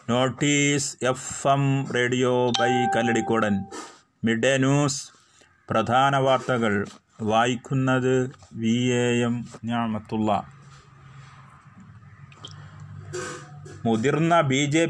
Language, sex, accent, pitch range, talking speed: Malayalam, male, native, 125-145 Hz, 70 wpm